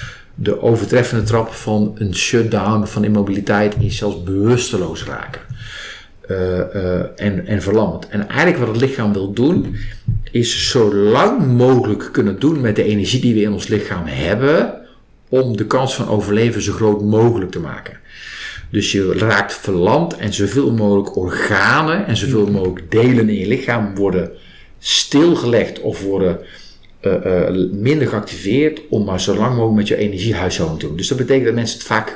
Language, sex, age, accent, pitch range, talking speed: Dutch, male, 50-69, Dutch, 100-120 Hz, 165 wpm